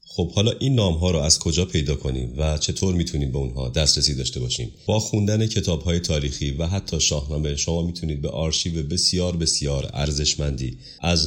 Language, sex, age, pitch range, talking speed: Persian, male, 30-49, 70-85 Hz, 175 wpm